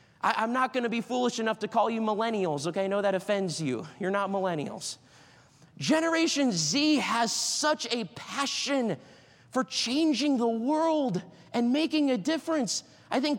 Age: 20-39